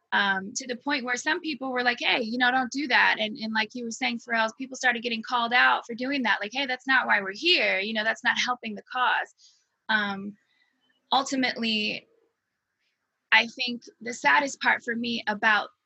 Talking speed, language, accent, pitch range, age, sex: 210 wpm, English, American, 215-260 Hz, 20-39, female